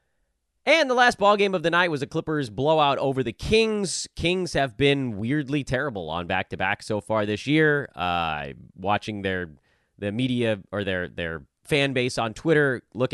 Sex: male